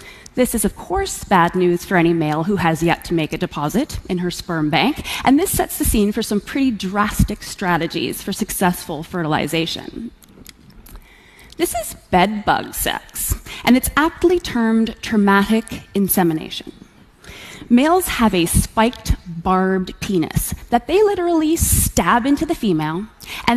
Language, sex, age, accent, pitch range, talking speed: English, female, 20-39, American, 180-250 Hz, 145 wpm